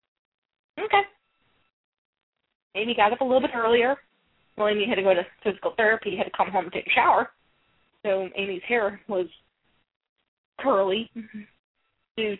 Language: English